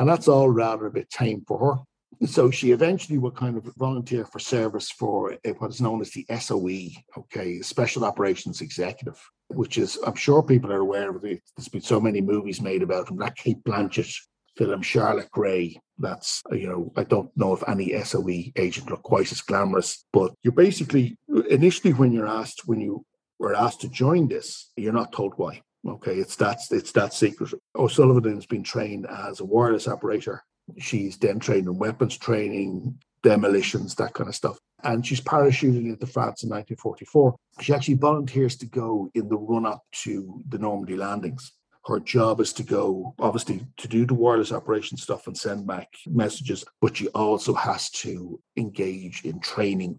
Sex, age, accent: male, 50-69, Irish